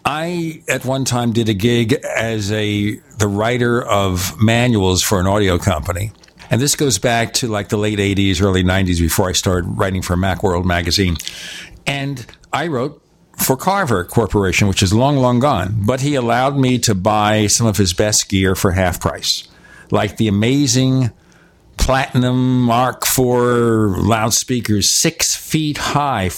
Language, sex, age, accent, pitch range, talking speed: English, male, 60-79, American, 100-135 Hz, 160 wpm